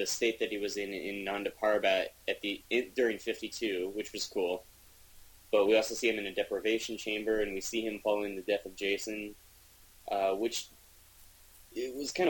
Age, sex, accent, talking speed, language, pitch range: 20-39, male, American, 185 wpm, English, 95-115 Hz